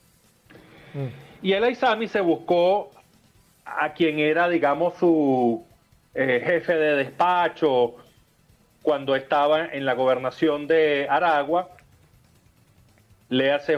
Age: 40-59